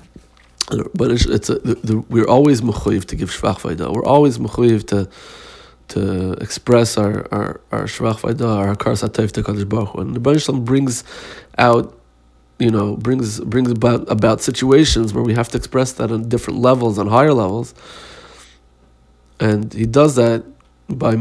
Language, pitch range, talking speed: Hebrew, 100-120 Hz, 125 wpm